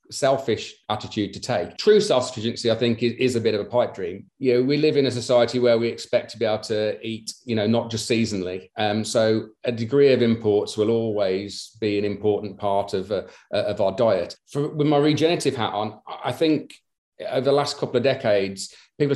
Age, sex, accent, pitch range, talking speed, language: 40-59, male, British, 110-130 Hz, 210 wpm, English